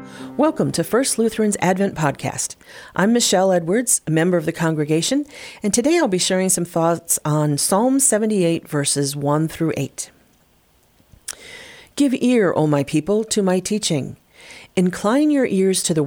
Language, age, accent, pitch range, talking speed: English, 40-59, American, 145-215 Hz, 155 wpm